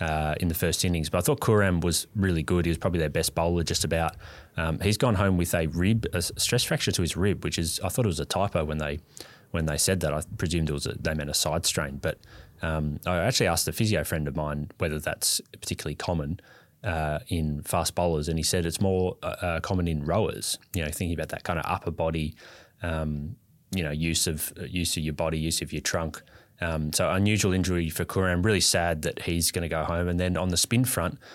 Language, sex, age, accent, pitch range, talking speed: English, male, 20-39, Australian, 80-90 Hz, 240 wpm